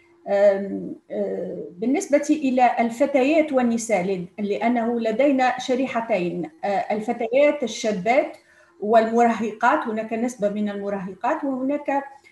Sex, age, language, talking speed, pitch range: female, 40-59, Arabic, 75 wpm, 205-255 Hz